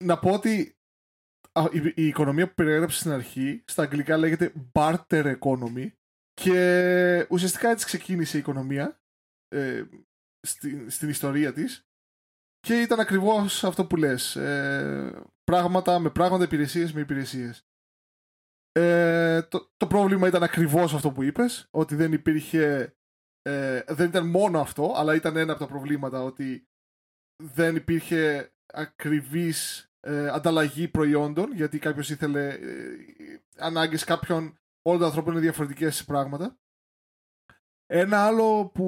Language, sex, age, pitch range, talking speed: Greek, male, 20-39, 150-185 Hz, 125 wpm